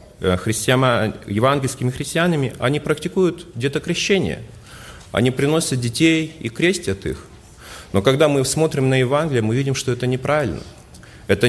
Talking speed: 125 wpm